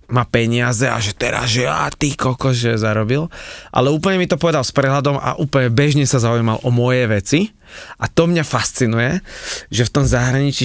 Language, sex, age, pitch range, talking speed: Slovak, male, 20-39, 115-145 Hz, 190 wpm